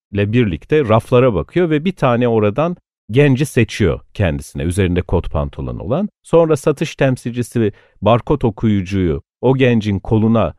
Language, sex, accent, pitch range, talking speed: Turkish, male, native, 95-145 Hz, 130 wpm